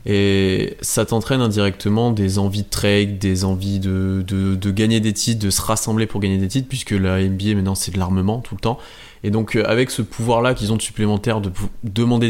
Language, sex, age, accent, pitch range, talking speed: French, male, 20-39, French, 95-115 Hz, 220 wpm